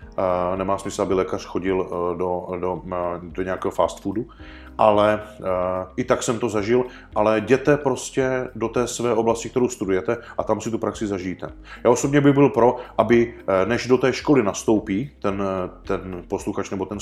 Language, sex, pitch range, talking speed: Czech, male, 100-120 Hz, 165 wpm